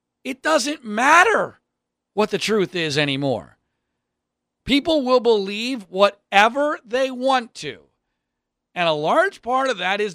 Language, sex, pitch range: English, male, 150-245 Hz